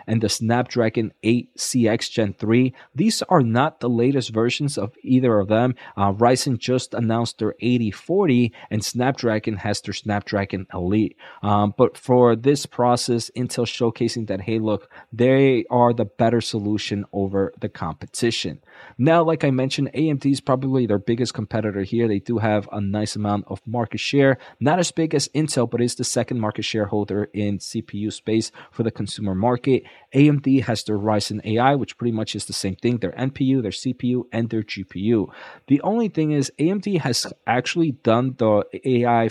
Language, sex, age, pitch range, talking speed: English, male, 20-39, 105-125 Hz, 170 wpm